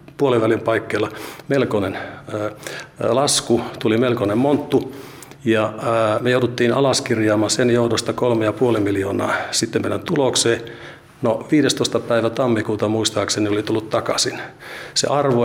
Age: 50-69